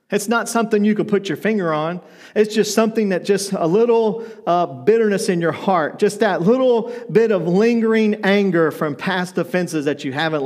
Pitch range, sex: 155-205 Hz, male